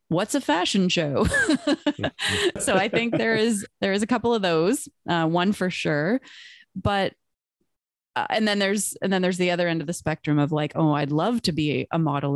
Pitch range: 155-190 Hz